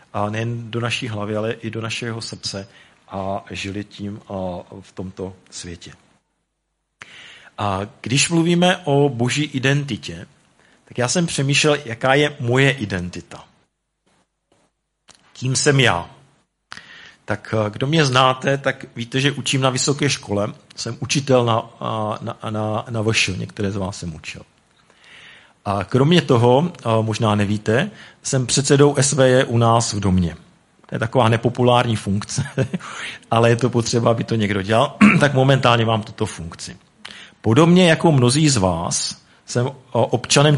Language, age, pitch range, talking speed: Czech, 40-59, 105-135 Hz, 135 wpm